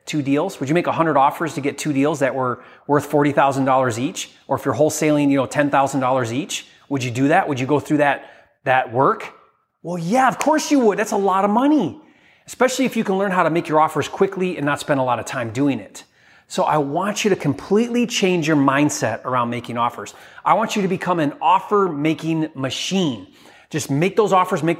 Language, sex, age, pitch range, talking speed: English, male, 30-49, 145-200 Hz, 230 wpm